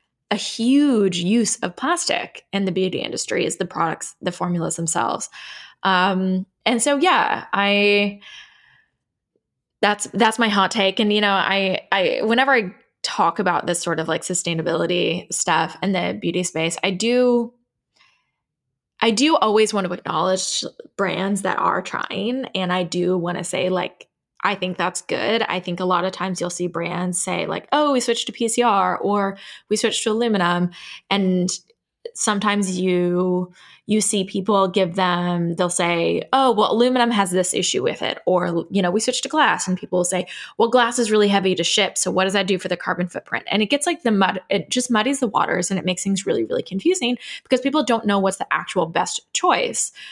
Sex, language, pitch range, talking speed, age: female, English, 180-230 Hz, 190 wpm, 20-39